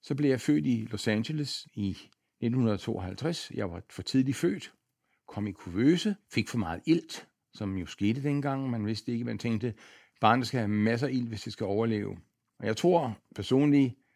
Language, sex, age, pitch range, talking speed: Danish, male, 60-79, 105-140 Hz, 190 wpm